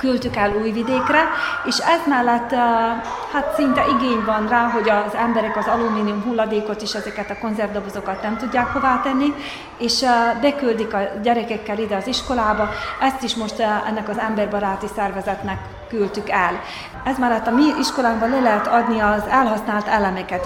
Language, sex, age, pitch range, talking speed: Hungarian, female, 30-49, 210-245 Hz, 155 wpm